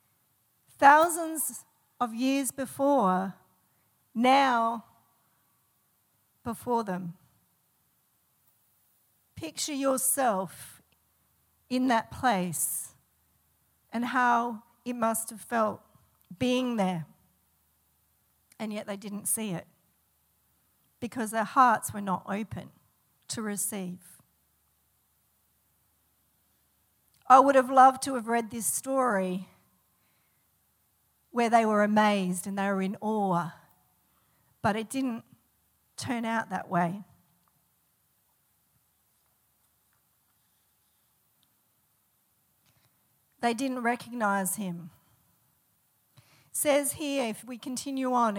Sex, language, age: female, English, 50-69